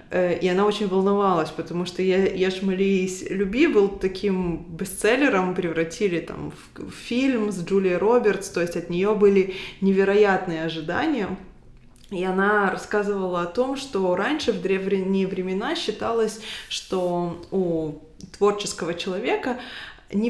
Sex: female